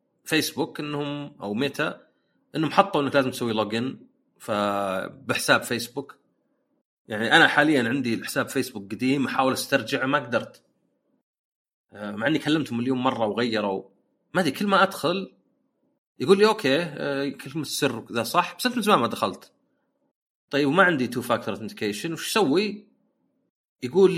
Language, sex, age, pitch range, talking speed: Arabic, male, 30-49, 120-190 Hz, 140 wpm